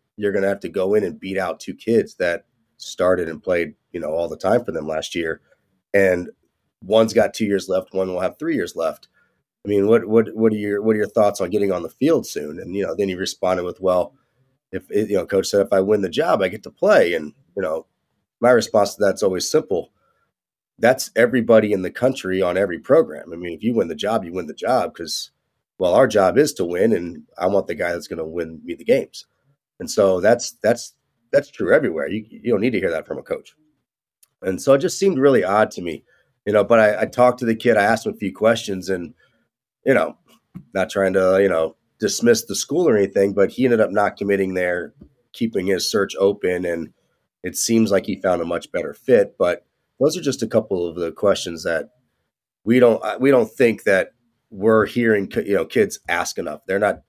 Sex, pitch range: male, 95-120 Hz